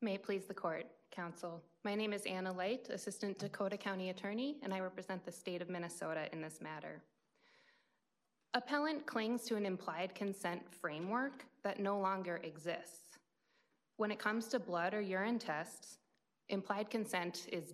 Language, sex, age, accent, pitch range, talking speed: English, female, 20-39, American, 185-230 Hz, 155 wpm